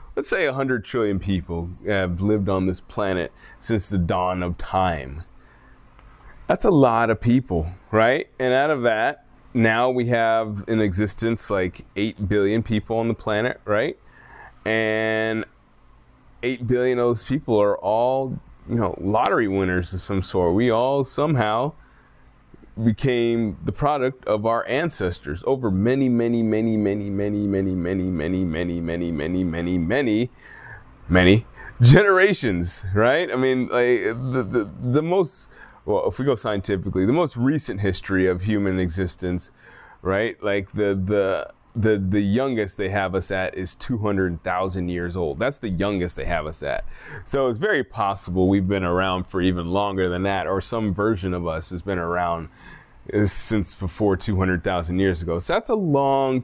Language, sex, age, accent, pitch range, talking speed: English, male, 20-39, American, 95-115 Hz, 160 wpm